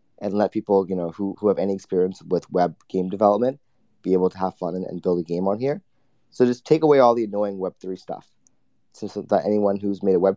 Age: 30-49